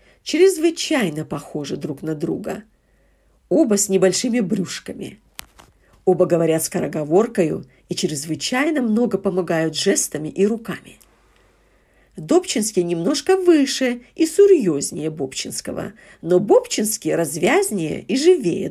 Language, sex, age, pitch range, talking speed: Russian, female, 50-69, 165-225 Hz, 95 wpm